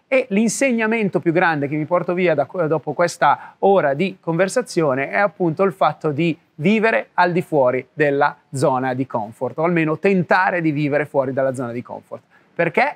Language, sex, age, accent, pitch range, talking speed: Italian, male, 30-49, native, 140-185 Hz, 170 wpm